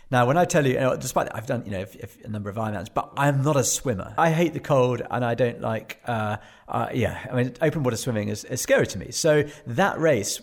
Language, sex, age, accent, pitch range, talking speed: English, male, 40-59, British, 110-135 Hz, 275 wpm